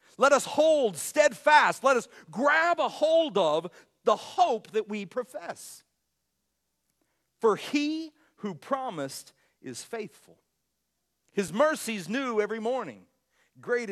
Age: 50-69